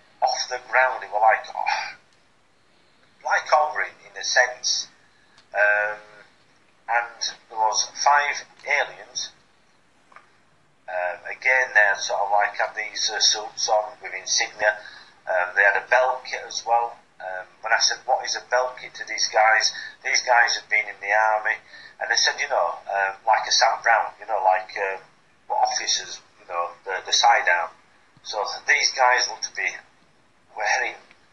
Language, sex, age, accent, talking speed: English, male, 40-59, British, 170 wpm